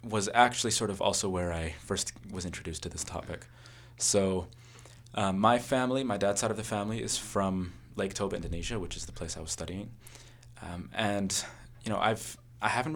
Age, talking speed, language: 20-39, 195 wpm, English